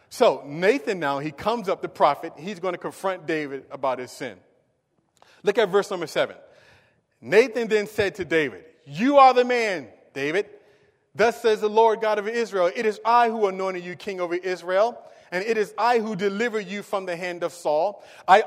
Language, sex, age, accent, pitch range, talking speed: English, male, 30-49, American, 165-220 Hz, 195 wpm